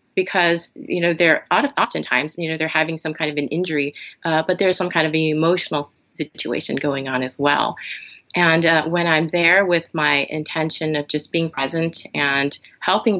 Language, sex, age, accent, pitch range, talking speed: English, female, 30-49, American, 150-175 Hz, 185 wpm